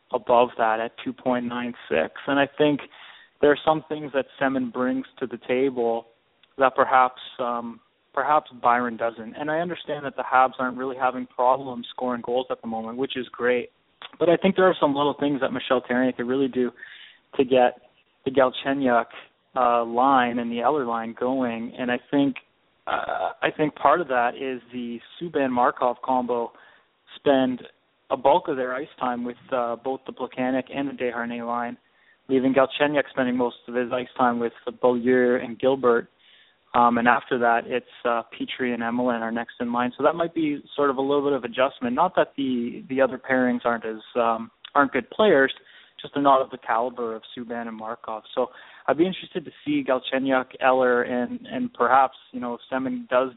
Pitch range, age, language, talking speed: 120-135 Hz, 20-39, English, 190 wpm